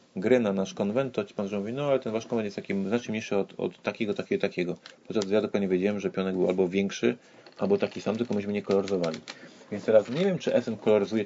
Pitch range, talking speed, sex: 95-115 Hz, 240 wpm, male